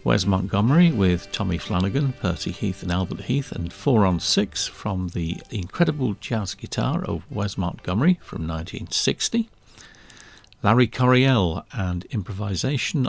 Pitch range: 95-140 Hz